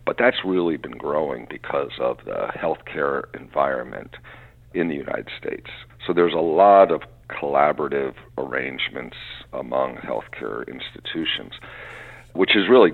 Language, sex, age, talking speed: English, male, 50-69, 125 wpm